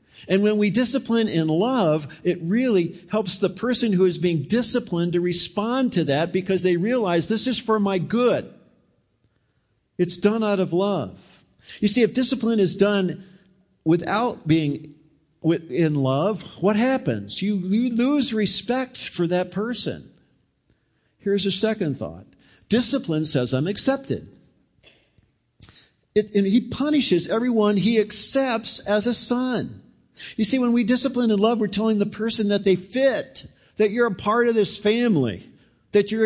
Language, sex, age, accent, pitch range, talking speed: English, male, 50-69, American, 150-210 Hz, 150 wpm